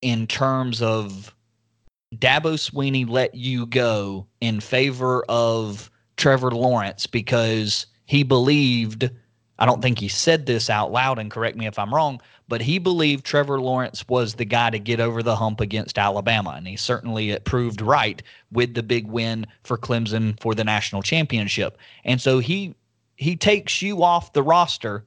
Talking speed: 170 wpm